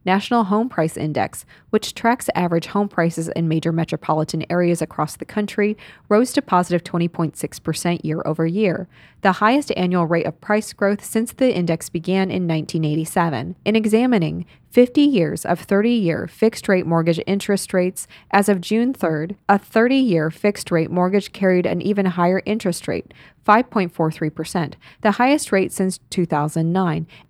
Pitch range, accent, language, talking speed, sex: 165-210 Hz, American, English, 145 wpm, female